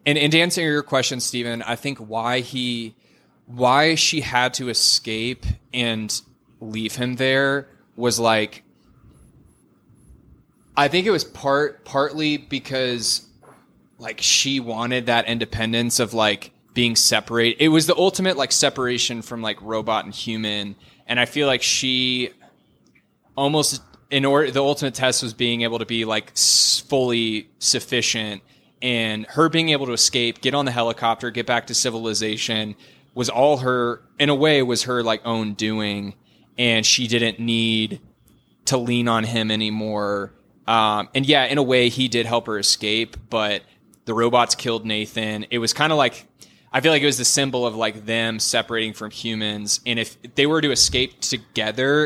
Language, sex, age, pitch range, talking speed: English, male, 20-39, 110-130 Hz, 165 wpm